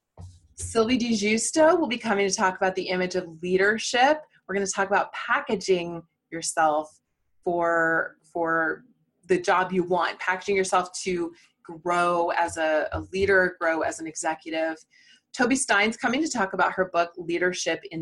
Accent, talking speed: American, 155 wpm